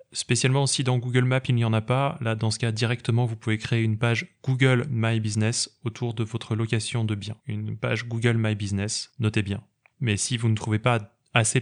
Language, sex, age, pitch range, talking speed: French, male, 20-39, 105-125 Hz, 220 wpm